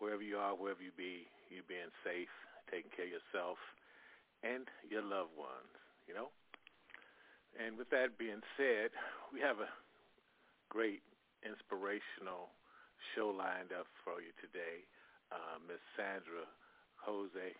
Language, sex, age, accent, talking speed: English, male, 40-59, American, 135 wpm